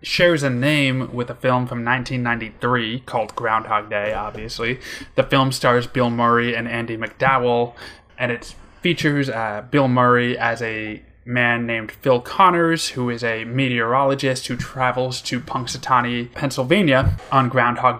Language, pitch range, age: English, 120-140 Hz, 20-39